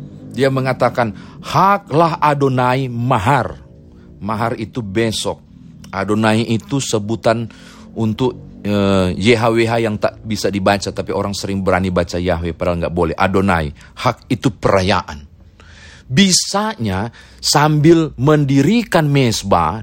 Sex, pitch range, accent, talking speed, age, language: male, 95-155 Hz, native, 105 wpm, 40-59, Indonesian